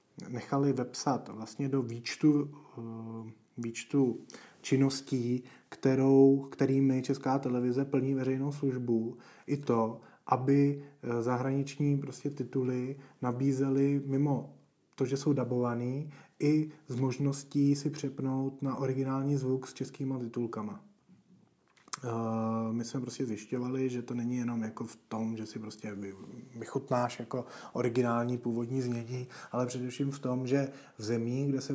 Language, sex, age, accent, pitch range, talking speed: Czech, male, 30-49, native, 120-140 Hz, 120 wpm